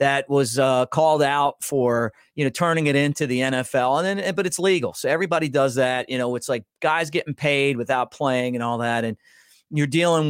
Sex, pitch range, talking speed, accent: male, 125-160 Hz, 215 wpm, American